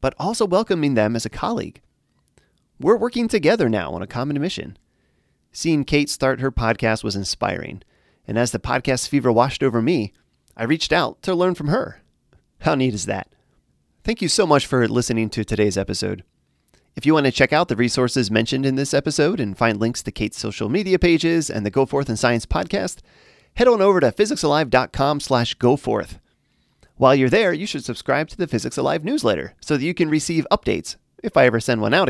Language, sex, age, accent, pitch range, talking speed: English, male, 30-49, American, 115-160 Hz, 200 wpm